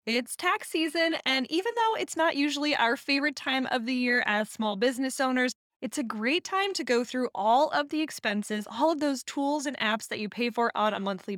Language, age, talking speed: English, 20-39, 225 wpm